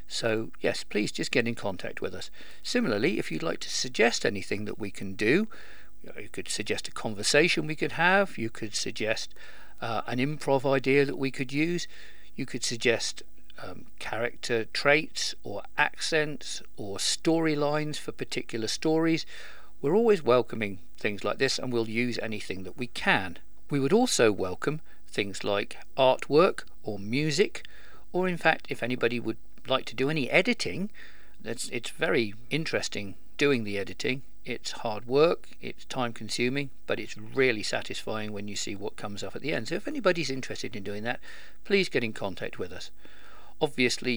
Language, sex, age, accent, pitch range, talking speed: English, male, 50-69, British, 110-145 Hz, 170 wpm